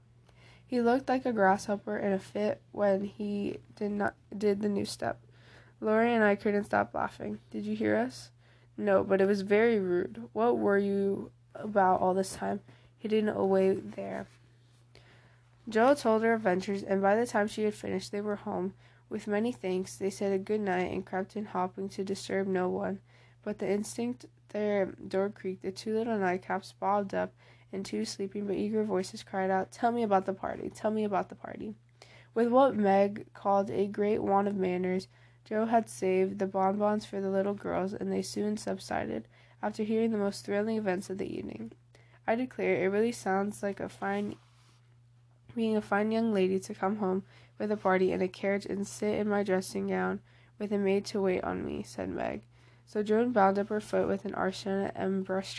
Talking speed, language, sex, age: 195 wpm, English, female, 20-39